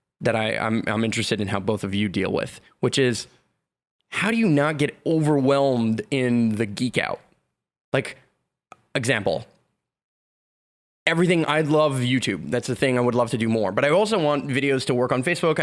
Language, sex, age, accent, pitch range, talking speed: English, male, 20-39, American, 115-150 Hz, 185 wpm